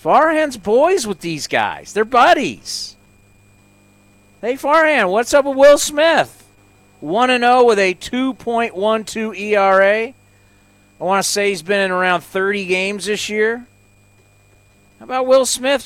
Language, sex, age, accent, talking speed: English, male, 40-59, American, 130 wpm